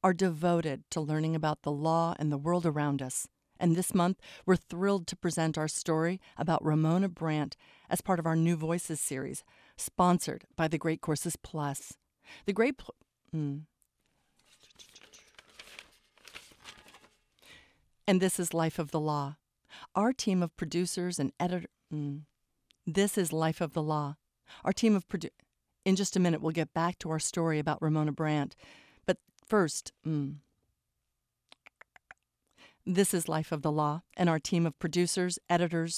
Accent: American